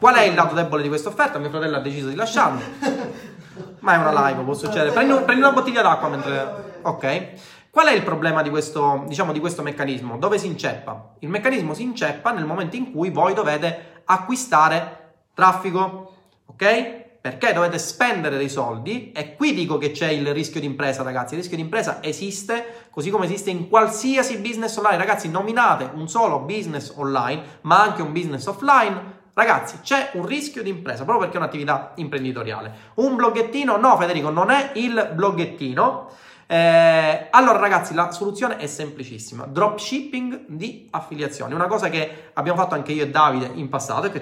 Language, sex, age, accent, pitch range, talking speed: Italian, male, 30-49, native, 150-215 Hz, 180 wpm